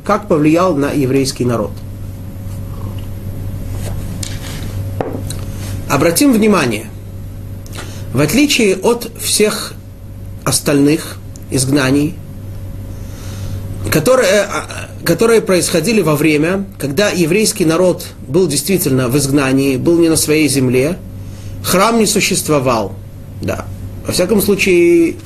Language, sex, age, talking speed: Russian, male, 30-49, 85 wpm